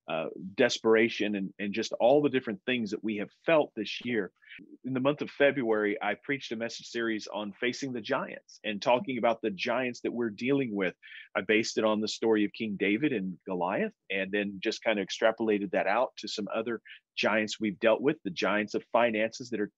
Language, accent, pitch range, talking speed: English, American, 105-130 Hz, 210 wpm